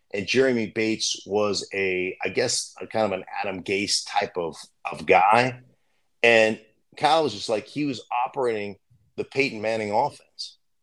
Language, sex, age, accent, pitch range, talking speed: English, male, 40-59, American, 105-125 Hz, 160 wpm